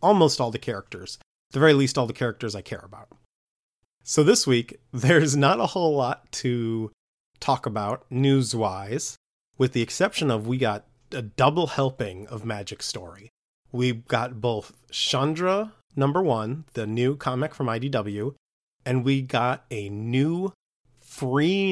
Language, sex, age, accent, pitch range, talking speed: English, male, 30-49, American, 115-140 Hz, 150 wpm